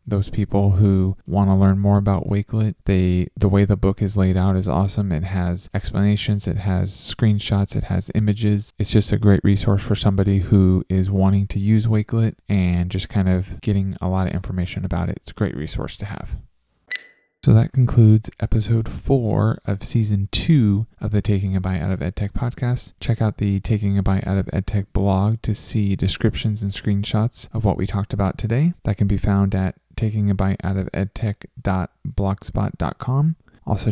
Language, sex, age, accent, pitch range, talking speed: English, male, 20-39, American, 95-110 Hz, 190 wpm